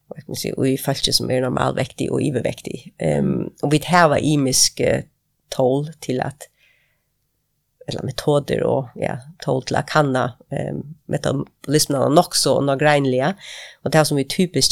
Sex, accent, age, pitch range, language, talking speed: female, Swedish, 30-49, 130-155 Hz, Danish, 140 wpm